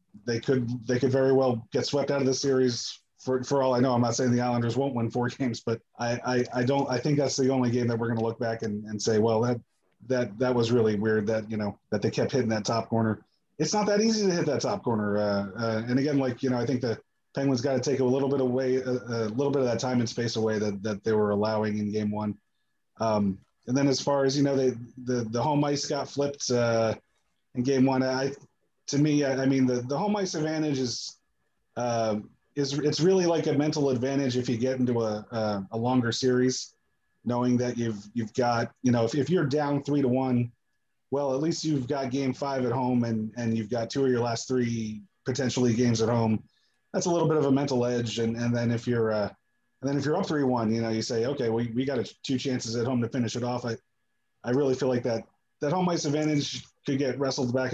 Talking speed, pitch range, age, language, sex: 255 wpm, 115-135 Hz, 30-49, English, male